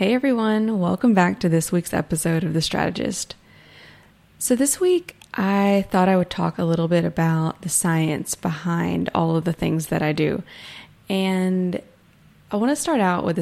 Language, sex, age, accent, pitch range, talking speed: English, female, 20-39, American, 165-200 Hz, 180 wpm